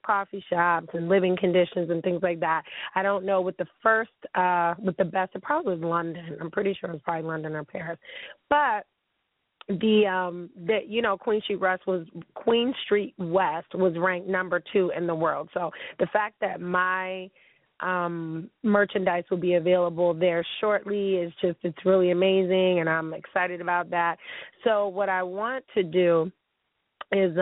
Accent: American